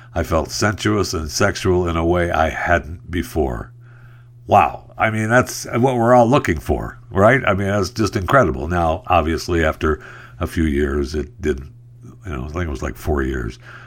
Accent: American